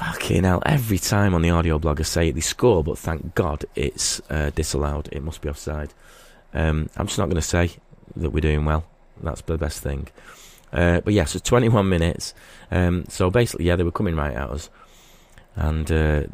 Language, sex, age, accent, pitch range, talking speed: English, male, 30-49, British, 75-95 Hz, 200 wpm